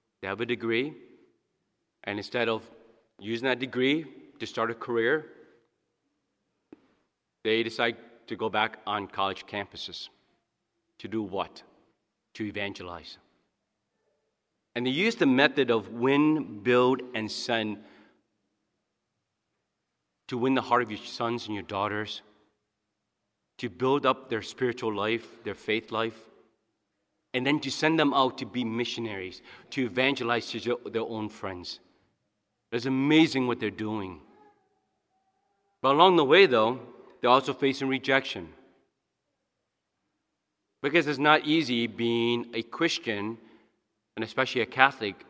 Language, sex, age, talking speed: English, male, 40-59, 125 wpm